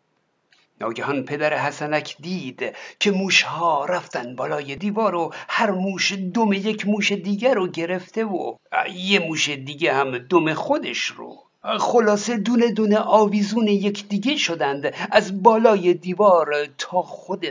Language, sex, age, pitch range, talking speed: Persian, male, 60-79, 175-210 Hz, 130 wpm